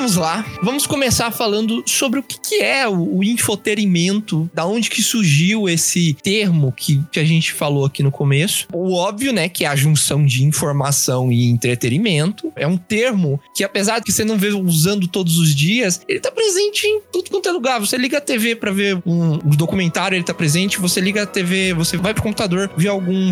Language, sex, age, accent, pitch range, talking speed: Portuguese, male, 20-39, Brazilian, 165-215 Hz, 200 wpm